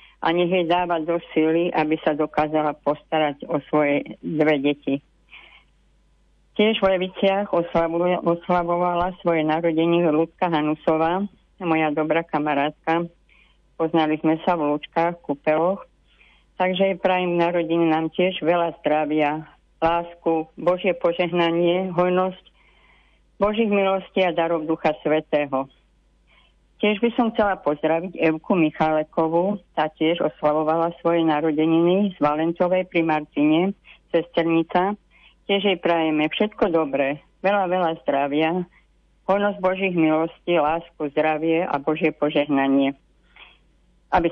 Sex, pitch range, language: female, 155-180 Hz, Slovak